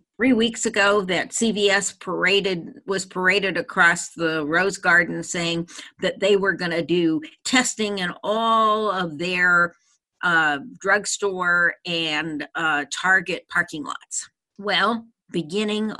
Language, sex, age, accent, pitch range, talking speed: English, female, 50-69, American, 170-210 Hz, 125 wpm